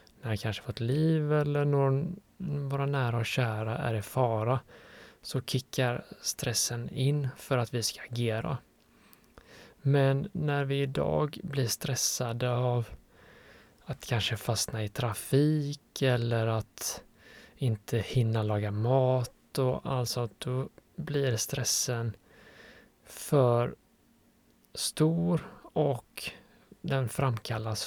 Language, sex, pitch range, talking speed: Swedish, male, 115-140 Hz, 110 wpm